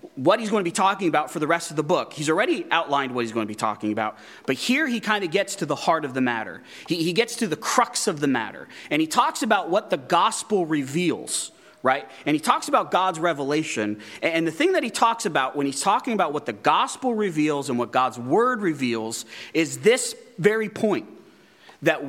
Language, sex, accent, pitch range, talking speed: English, male, American, 130-215 Hz, 230 wpm